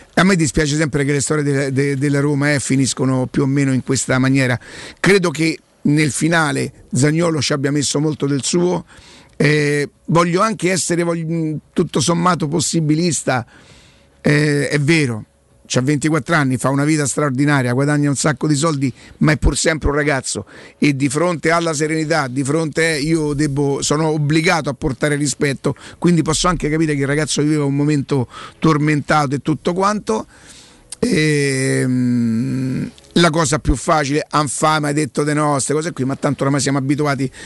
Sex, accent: male, native